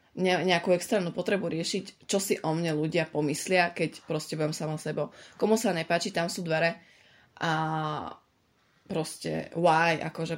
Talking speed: 145 wpm